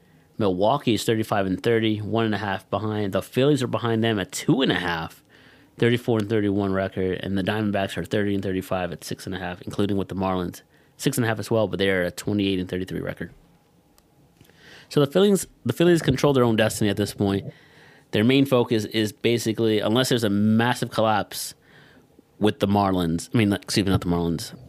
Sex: male